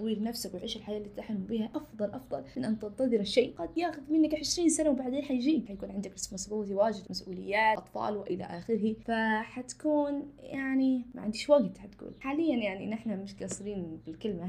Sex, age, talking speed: female, 20-39, 170 wpm